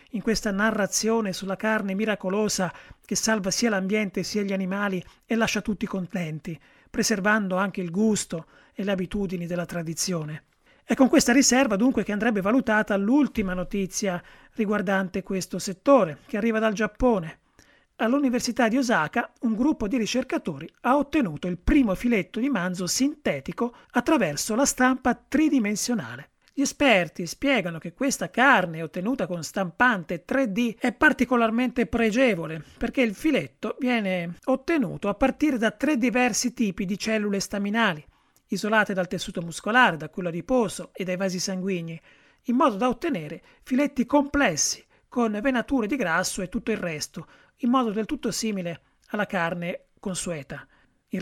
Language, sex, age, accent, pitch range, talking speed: Italian, male, 30-49, native, 185-245 Hz, 145 wpm